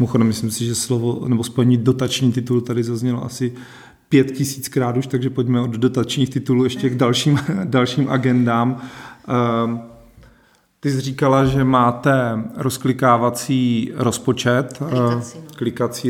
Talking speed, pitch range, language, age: 120 wpm, 120-130 Hz, Czech, 40-59